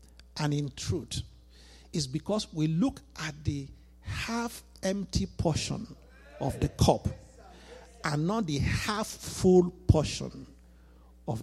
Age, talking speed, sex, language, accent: 50-69, 105 wpm, male, English, Nigerian